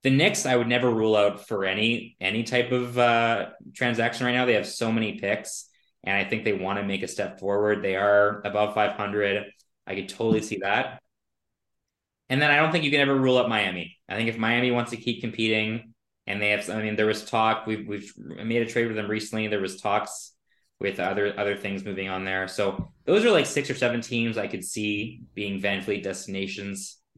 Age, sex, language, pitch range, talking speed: 20-39, male, English, 100-120 Hz, 220 wpm